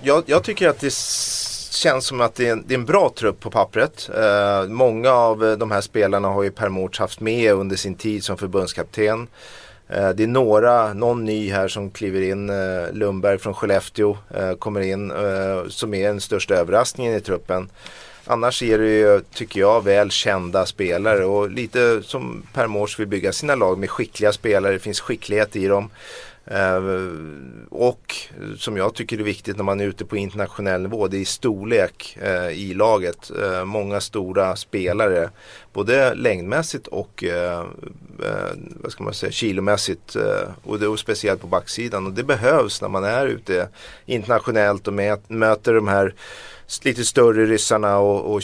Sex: male